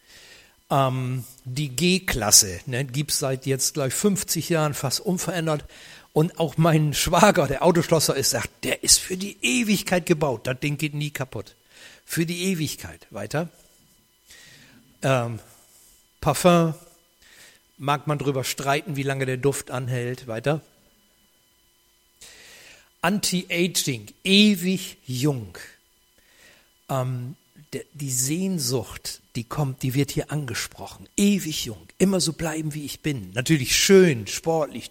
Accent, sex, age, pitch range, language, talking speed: German, male, 60-79, 125-165 Hz, German, 120 wpm